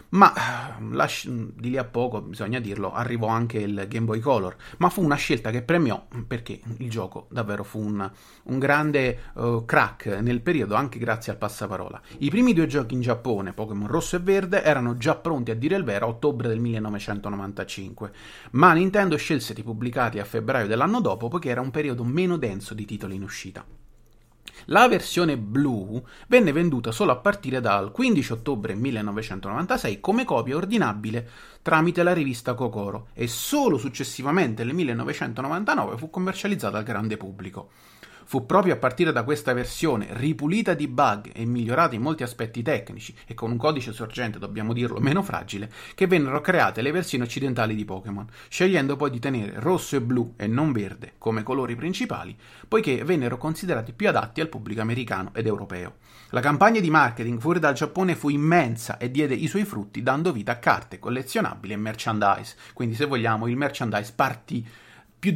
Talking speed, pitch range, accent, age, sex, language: 170 wpm, 110-150 Hz, native, 30-49, male, Italian